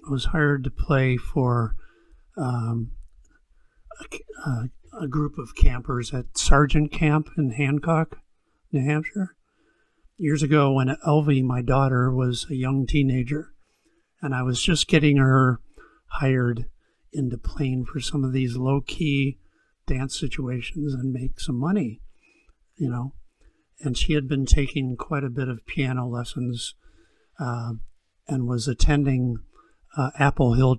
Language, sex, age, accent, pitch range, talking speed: English, male, 50-69, American, 125-150 Hz, 135 wpm